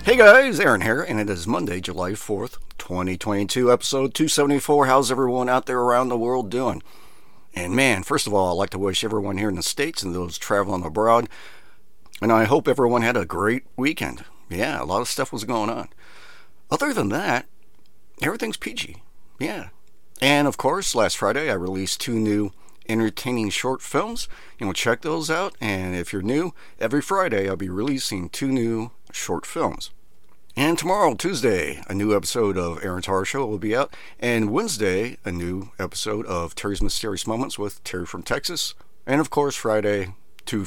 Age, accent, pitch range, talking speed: 50-69, American, 95-130 Hz, 180 wpm